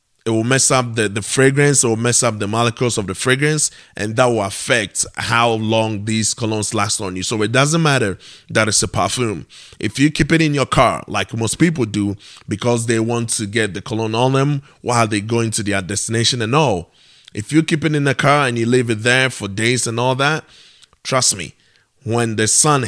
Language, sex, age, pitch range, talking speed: English, male, 20-39, 110-135 Hz, 220 wpm